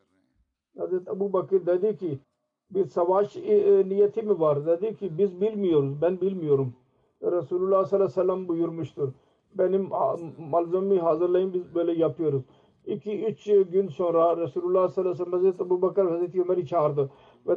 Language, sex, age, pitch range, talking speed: Turkish, male, 50-69, 165-195 Hz, 150 wpm